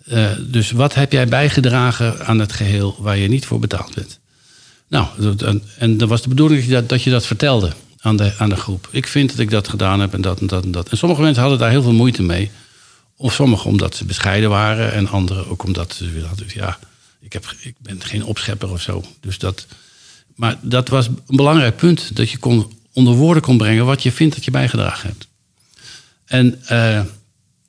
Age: 50-69